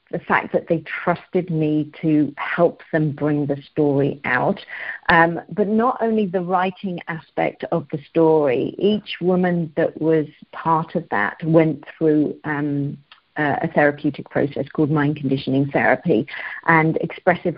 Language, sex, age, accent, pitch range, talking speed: English, female, 50-69, British, 150-175 Hz, 145 wpm